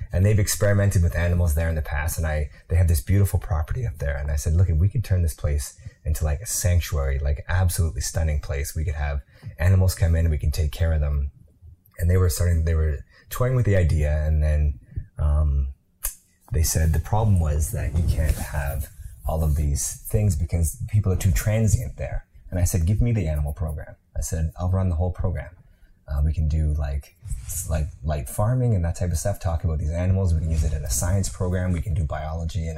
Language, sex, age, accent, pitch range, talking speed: English, male, 30-49, American, 80-95 Hz, 230 wpm